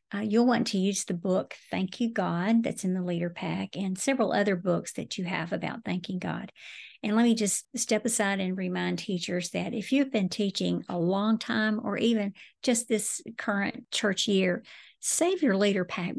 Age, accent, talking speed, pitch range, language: 50-69, American, 195 wpm, 190-225 Hz, English